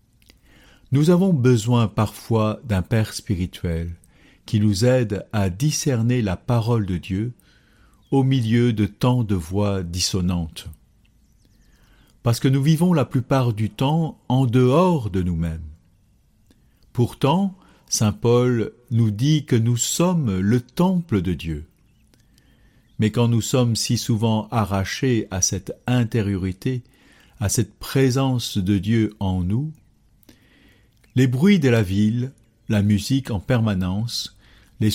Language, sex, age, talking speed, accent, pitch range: French, male, 50-69, 125 wpm, French, 100-125 Hz